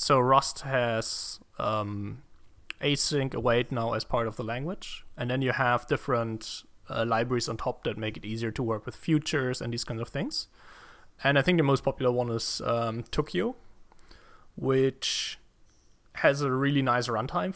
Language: English